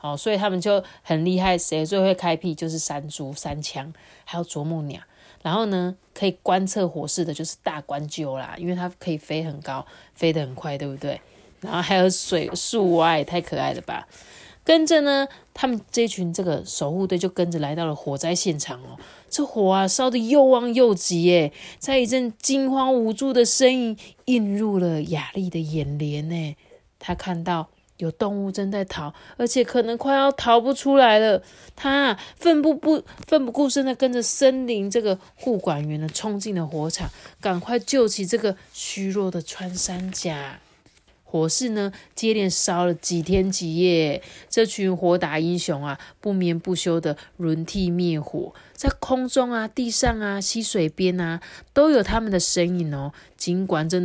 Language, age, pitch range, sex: Chinese, 30-49, 165-225 Hz, female